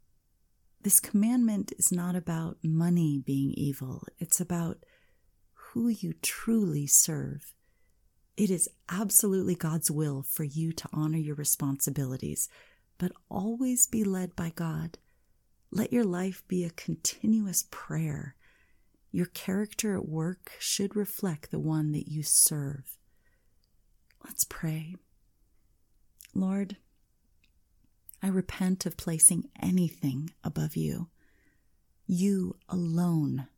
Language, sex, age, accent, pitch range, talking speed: English, female, 30-49, American, 150-190 Hz, 110 wpm